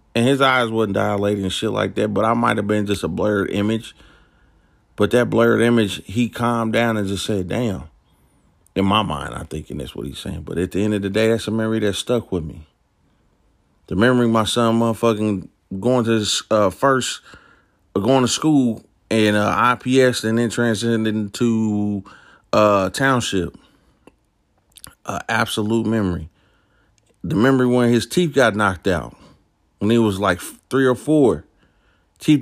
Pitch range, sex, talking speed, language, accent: 95-125 Hz, male, 175 wpm, English, American